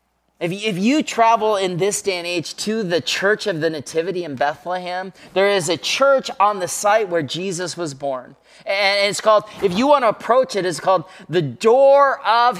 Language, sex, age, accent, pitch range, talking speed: English, male, 30-49, American, 160-235 Hz, 195 wpm